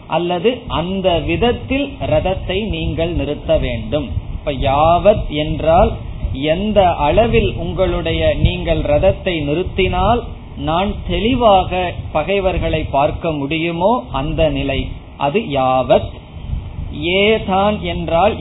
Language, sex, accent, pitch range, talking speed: Tamil, male, native, 140-190 Hz, 45 wpm